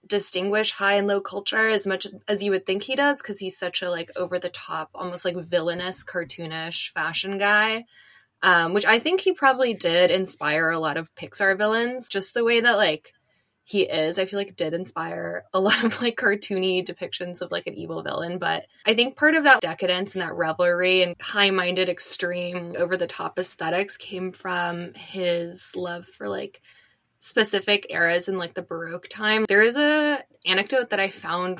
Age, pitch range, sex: 20-39, 180-215 Hz, female